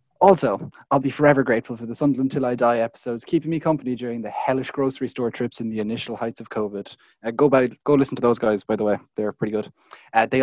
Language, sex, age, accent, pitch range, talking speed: English, male, 20-39, Irish, 115-145 Hz, 245 wpm